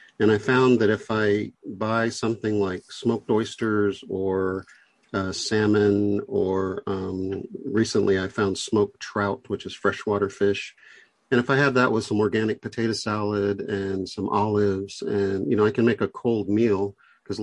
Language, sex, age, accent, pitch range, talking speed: English, male, 50-69, American, 100-110 Hz, 165 wpm